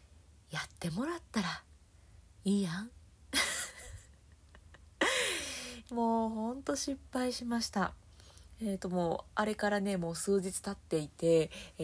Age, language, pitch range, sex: 30-49, Japanese, 160-235 Hz, female